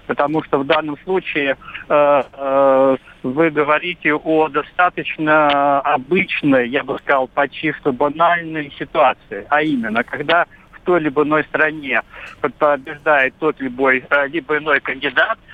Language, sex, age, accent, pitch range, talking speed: Russian, male, 50-69, native, 135-155 Hz, 125 wpm